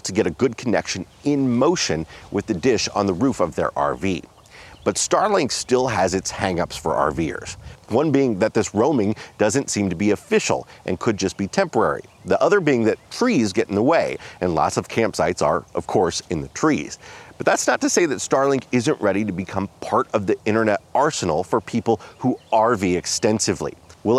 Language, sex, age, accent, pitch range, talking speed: English, male, 40-59, American, 90-125 Hz, 200 wpm